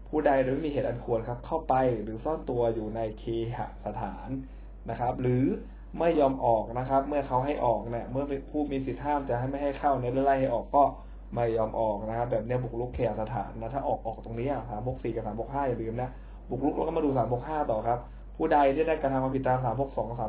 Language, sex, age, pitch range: Thai, male, 20-39, 110-130 Hz